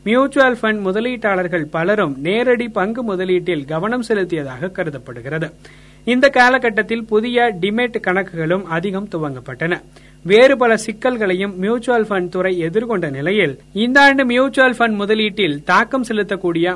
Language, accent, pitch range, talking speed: Tamil, native, 175-230 Hz, 110 wpm